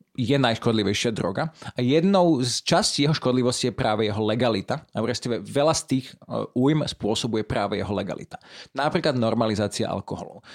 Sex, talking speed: male, 140 wpm